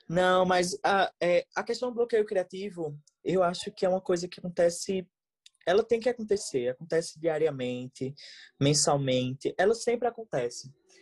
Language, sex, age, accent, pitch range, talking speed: Portuguese, male, 20-39, Brazilian, 140-190 Hz, 145 wpm